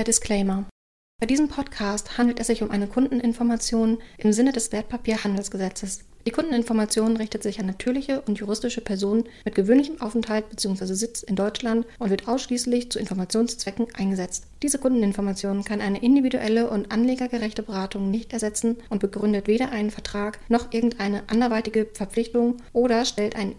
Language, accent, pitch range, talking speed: German, German, 210-240 Hz, 150 wpm